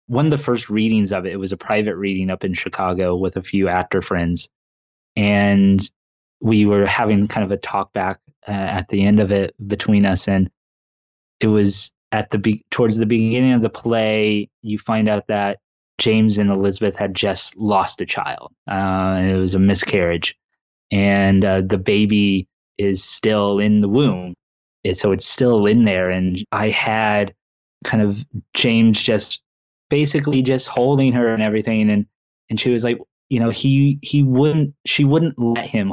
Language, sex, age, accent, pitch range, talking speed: English, male, 20-39, American, 95-110 Hz, 180 wpm